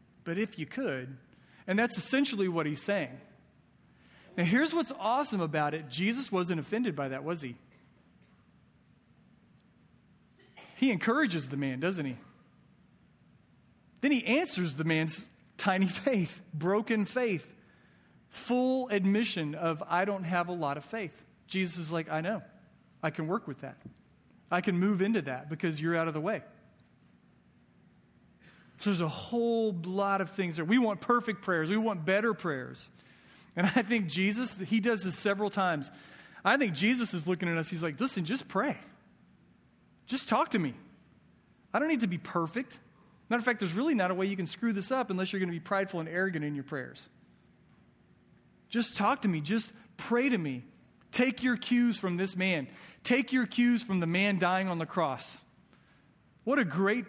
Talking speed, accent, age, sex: 175 wpm, American, 40-59, male